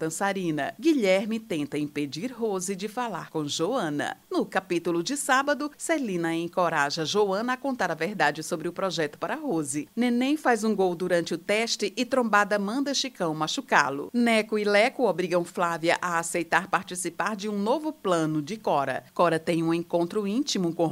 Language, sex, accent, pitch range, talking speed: Portuguese, female, Brazilian, 165-230 Hz, 160 wpm